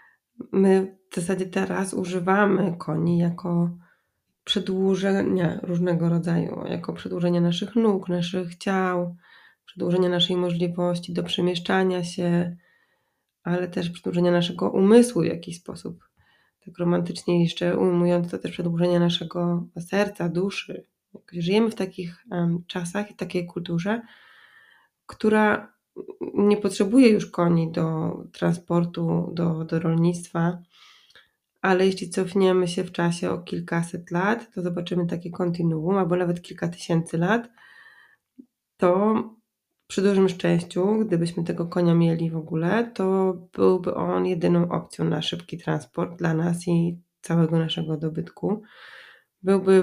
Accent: native